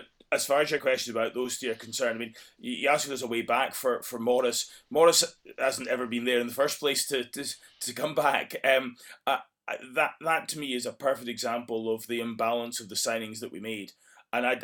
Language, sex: English, male